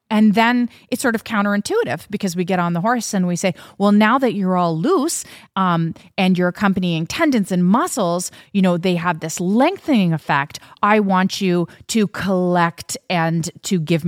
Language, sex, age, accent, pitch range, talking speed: English, female, 30-49, American, 170-215 Hz, 185 wpm